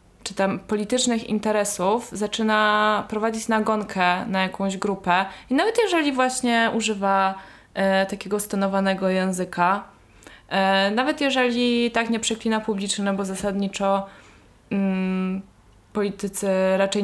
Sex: female